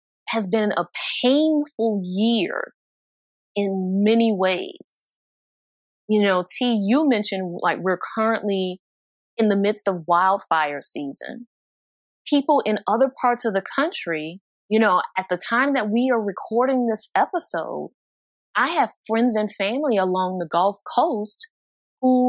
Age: 20-39